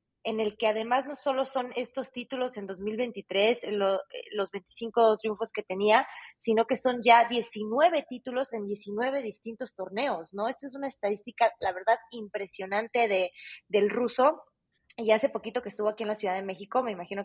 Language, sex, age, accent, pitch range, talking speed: Spanish, female, 20-39, Mexican, 190-235 Hz, 175 wpm